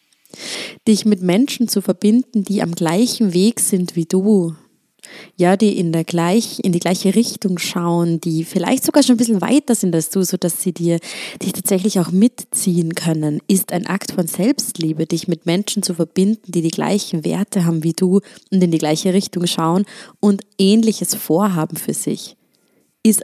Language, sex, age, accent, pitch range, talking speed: German, female, 20-39, German, 175-215 Hz, 175 wpm